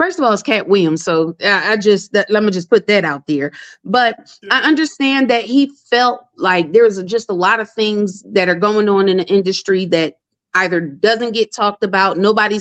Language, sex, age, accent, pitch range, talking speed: English, female, 30-49, American, 210-250 Hz, 215 wpm